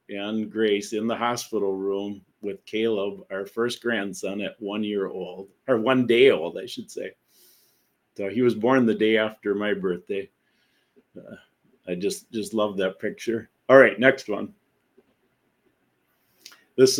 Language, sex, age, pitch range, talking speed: English, male, 50-69, 95-115 Hz, 150 wpm